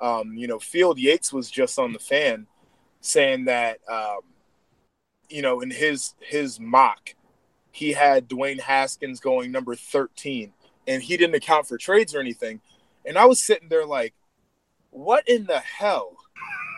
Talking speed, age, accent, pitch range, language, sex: 155 wpm, 20-39, American, 135-220 Hz, English, male